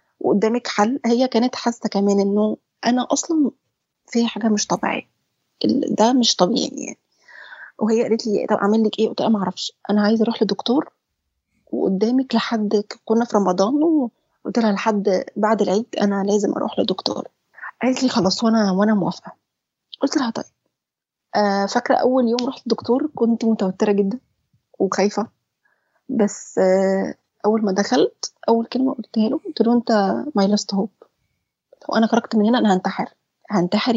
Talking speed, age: 155 wpm, 20-39